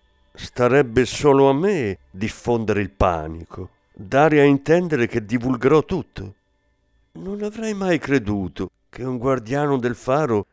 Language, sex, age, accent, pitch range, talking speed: Italian, male, 50-69, native, 95-145 Hz, 125 wpm